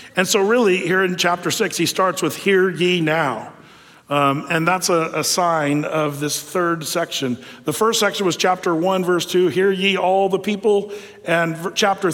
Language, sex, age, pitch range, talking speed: English, male, 40-59, 165-200 Hz, 190 wpm